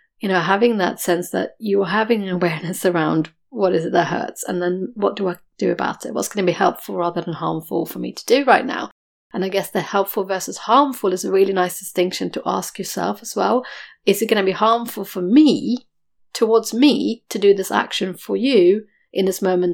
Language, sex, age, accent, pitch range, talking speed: English, female, 30-49, British, 175-210 Hz, 225 wpm